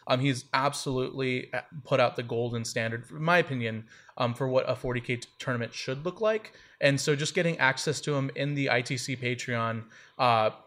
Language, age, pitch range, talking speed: English, 20-39, 120-145 Hz, 180 wpm